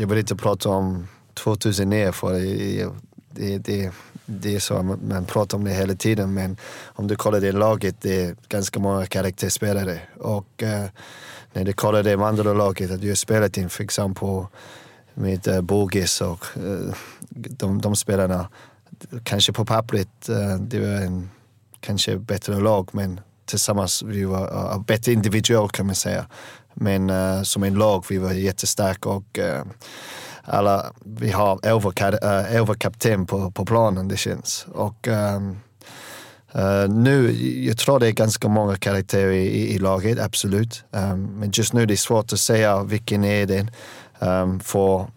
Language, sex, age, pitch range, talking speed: English, male, 30-49, 95-110 Hz, 165 wpm